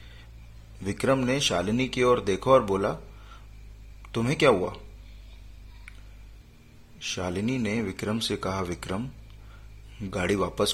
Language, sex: Hindi, male